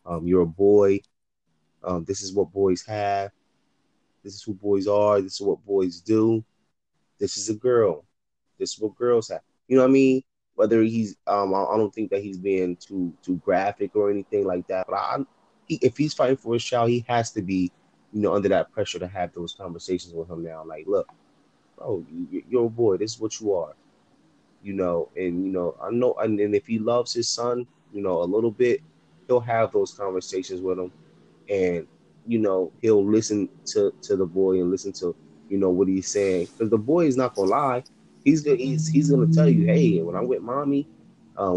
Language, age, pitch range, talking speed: English, 20-39, 95-120 Hz, 220 wpm